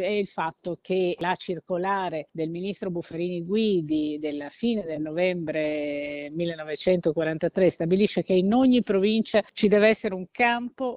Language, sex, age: Italian, female, 50-69